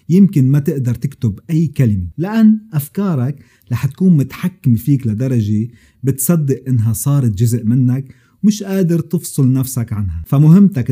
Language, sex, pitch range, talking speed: Arabic, male, 115-150 Hz, 130 wpm